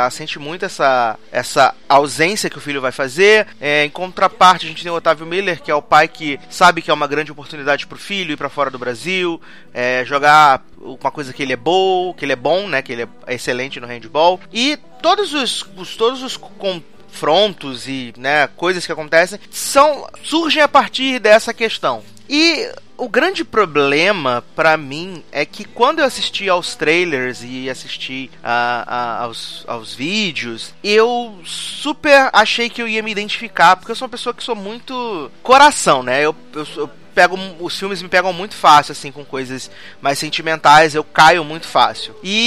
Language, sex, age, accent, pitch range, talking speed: Portuguese, male, 30-49, Brazilian, 155-235 Hz, 190 wpm